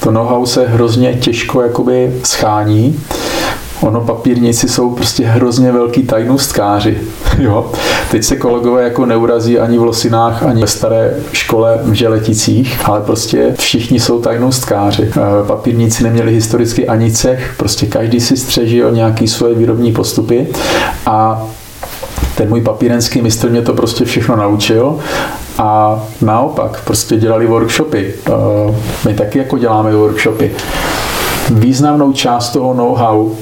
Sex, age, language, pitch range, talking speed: male, 40-59, Czech, 110-125 Hz, 130 wpm